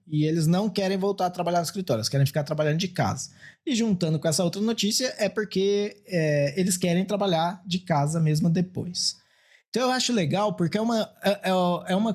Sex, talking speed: male, 190 wpm